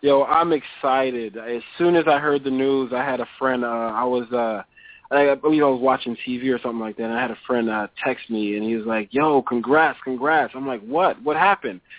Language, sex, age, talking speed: English, male, 20-39, 250 wpm